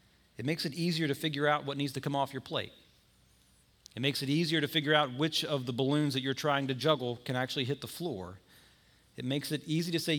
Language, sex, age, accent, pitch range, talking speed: English, male, 40-59, American, 130-165 Hz, 240 wpm